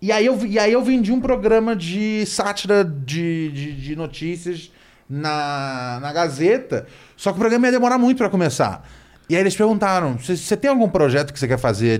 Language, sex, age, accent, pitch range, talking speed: Portuguese, male, 20-39, Brazilian, 140-215 Hz, 195 wpm